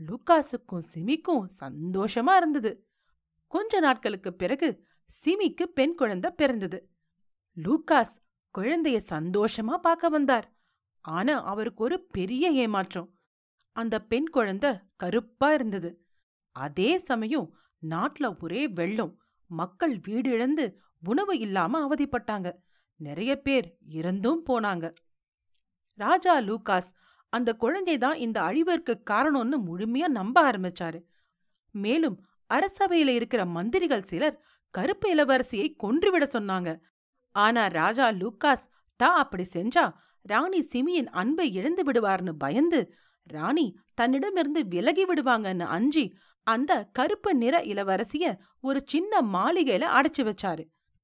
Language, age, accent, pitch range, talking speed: Tamil, 40-59, native, 190-305 Hz, 60 wpm